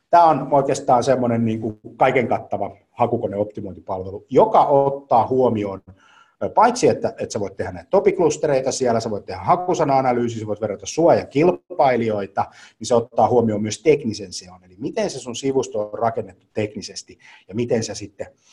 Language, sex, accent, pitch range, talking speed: Finnish, male, native, 105-130 Hz, 150 wpm